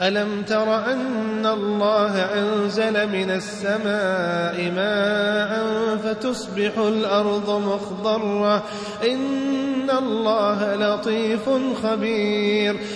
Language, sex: Arabic, male